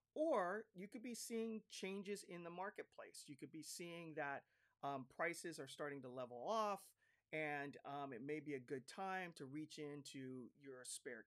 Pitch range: 140-190 Hz